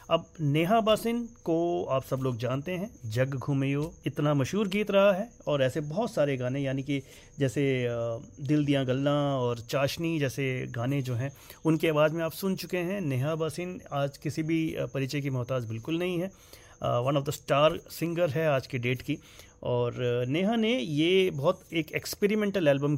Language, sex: Hindi, male